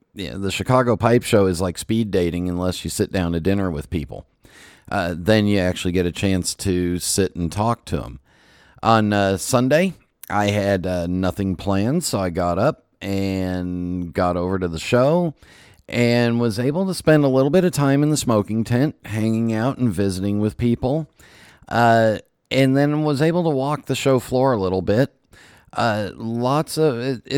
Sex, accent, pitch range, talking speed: male, American, 95-125 Hz, 185 wpm